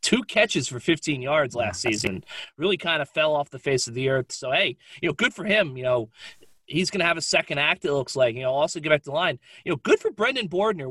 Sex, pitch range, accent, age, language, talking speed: male, 135-180 Hz, American, 30-49, English, 275 wpm